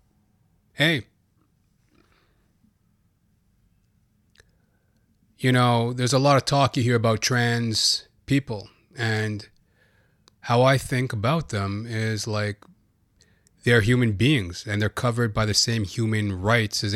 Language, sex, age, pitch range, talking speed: English, male, 30-49, 100-120 Hz, 115 wpm